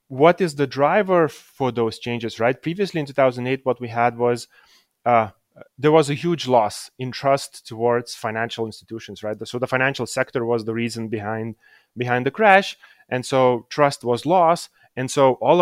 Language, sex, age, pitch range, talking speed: English, male, 30-49, 110-135 Hz, 175 wpm